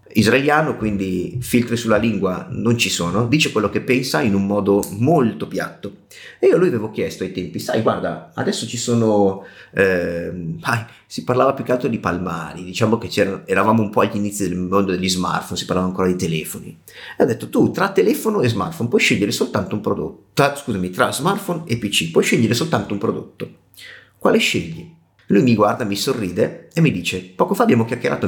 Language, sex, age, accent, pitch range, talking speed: Italian, male, 30-49, native, 90-120 Hz, 195 wpm